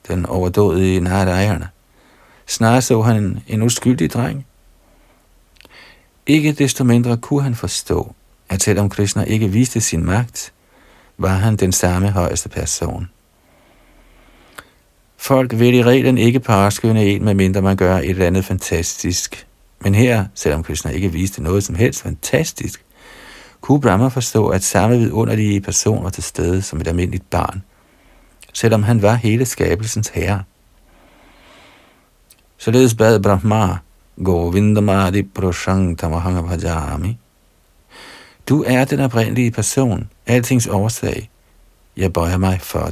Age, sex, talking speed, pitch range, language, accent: 50-69, male, 125 wpm, 90-115 Hz, Danish, native